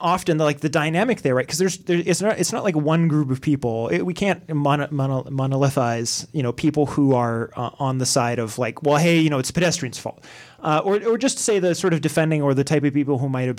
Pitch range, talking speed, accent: 130-160 Hz, 265 wpm, American